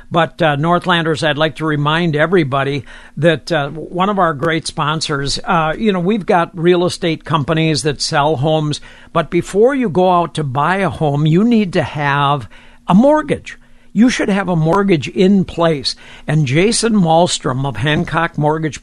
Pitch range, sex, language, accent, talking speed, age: 155-185 Hz, male, English, American, 170 wpm, 60-79